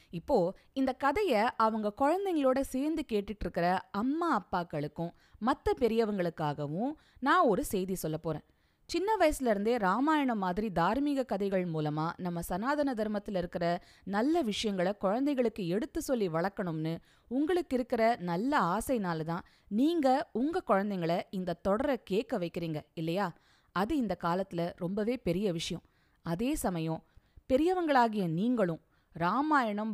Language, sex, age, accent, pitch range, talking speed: Tamil, female, 20-39, native, 175-260 Hz, 115 wpm